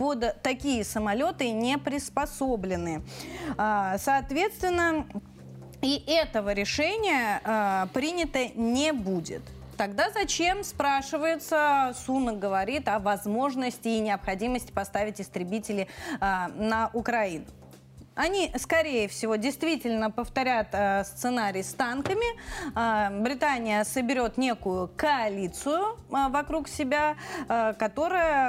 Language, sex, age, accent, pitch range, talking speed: Russian, female, 30-49, native, 200-285 Hz, 80 wpm